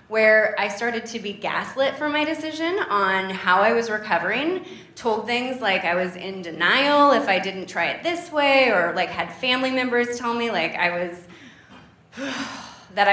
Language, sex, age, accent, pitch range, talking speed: English, female, 20-39, American, 180-230 Hz, 180 wpm